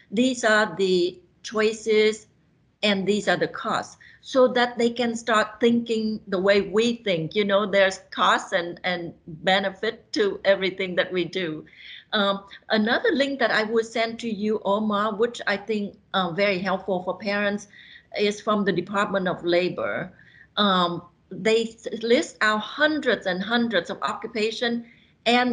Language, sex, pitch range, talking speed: English, female, 190-220 Hz, 155 wpm